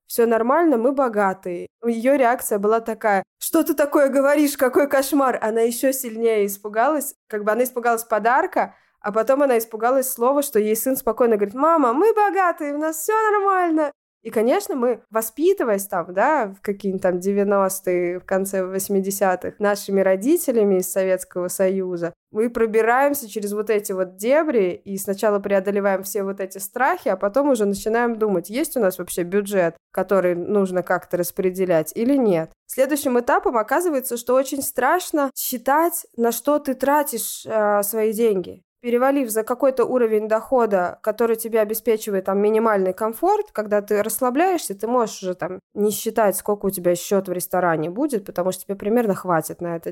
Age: 20-39